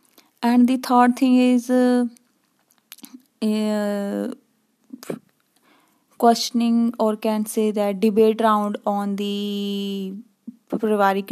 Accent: native